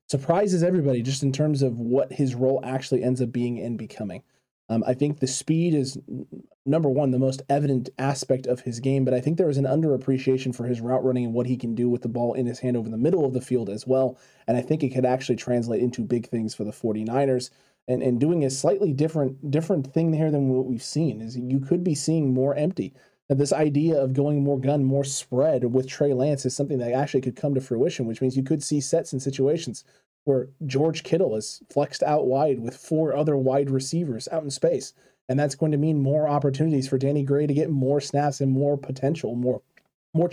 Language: English